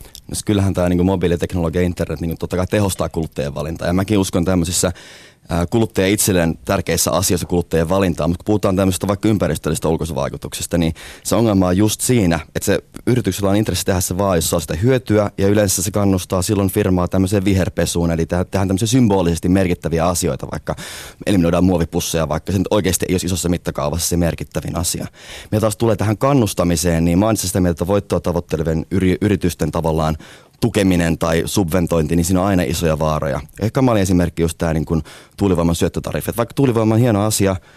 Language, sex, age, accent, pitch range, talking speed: Finnish, male, 30-49, native, 85-100 Hz, 175 wpm